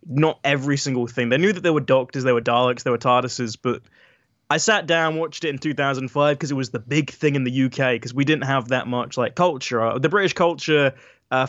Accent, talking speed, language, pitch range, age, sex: British, 235 wpm, English, 125-160 Hz, 20-39, male